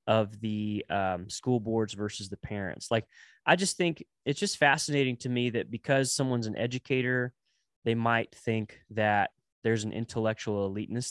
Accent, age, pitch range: American, 20-39, 105-135 Hz